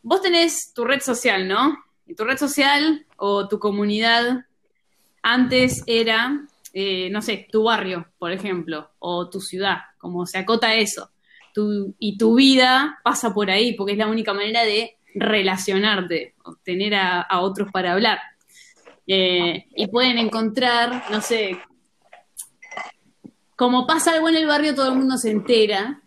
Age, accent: 20-39, Argentinian